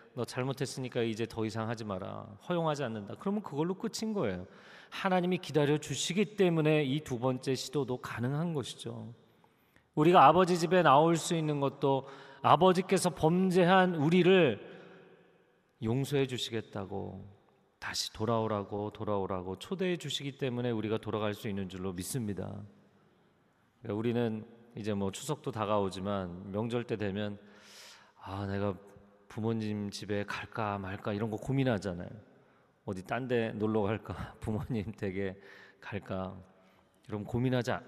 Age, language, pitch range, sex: 40-59, Korean, 100-130 Hz, male